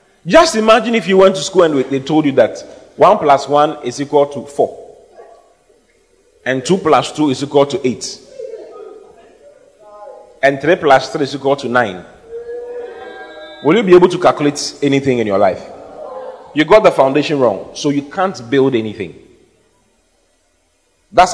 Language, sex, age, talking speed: English, male, 30-49, 155 wpm